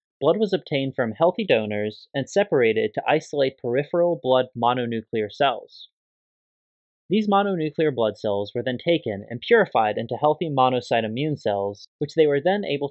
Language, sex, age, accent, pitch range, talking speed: English, male, 20-39, American, 115-160 Hz, 155 wpm